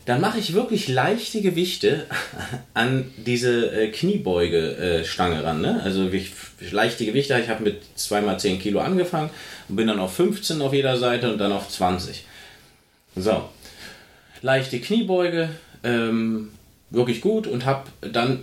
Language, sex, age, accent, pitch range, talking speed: German, male, 30-49, German, 110-170 Hz, 150 wpm